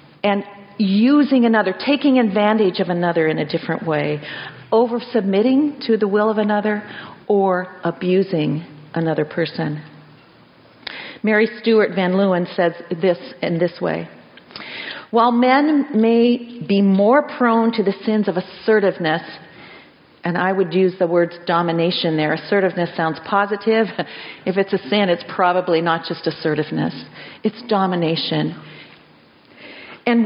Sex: female